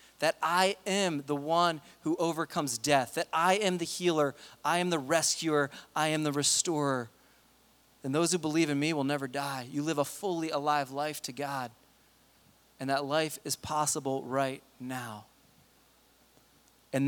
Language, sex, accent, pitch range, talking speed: English, male, American, 145-175 Hz, 160 wpm